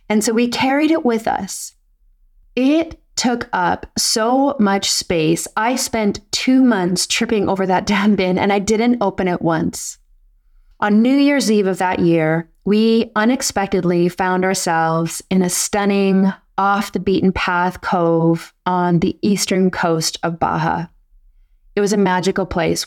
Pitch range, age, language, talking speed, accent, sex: 170-205 Hz, 20-39, English, 145 wpm, American, female